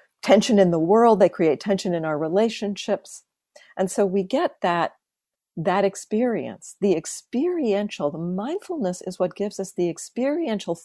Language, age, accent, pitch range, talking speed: English, 50-69, American, 180-230 Hz, 150 wpm